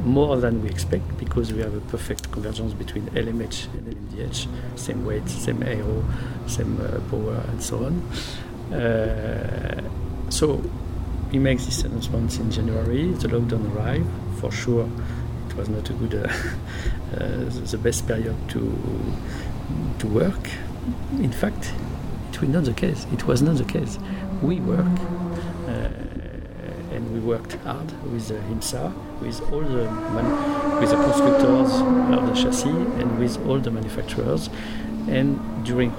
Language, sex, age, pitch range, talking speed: English, male, 60-79, 105-125 Hz, 150 wpm